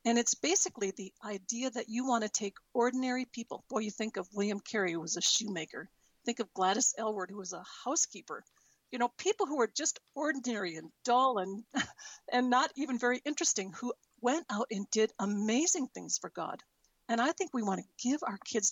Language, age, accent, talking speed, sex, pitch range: English, 50-69, American, 200 wpm, female, 200-250 Hz